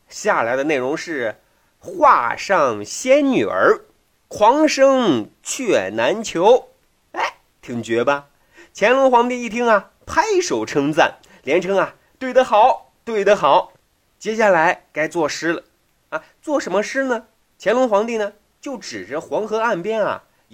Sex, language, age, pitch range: male, Chinese, 30-49, 220-315 Hz